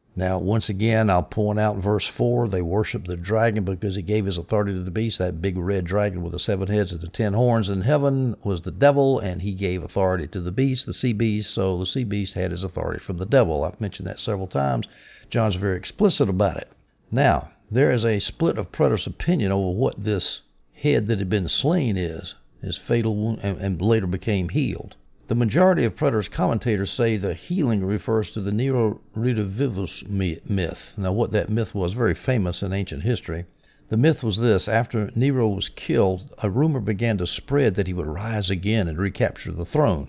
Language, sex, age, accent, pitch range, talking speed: English, male, 60-79, American, 95-115 Hz, 205 wpm